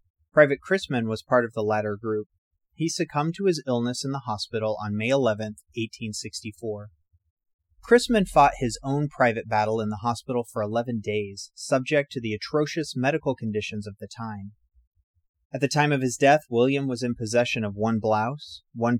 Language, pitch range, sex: English, 105-130 Hz, male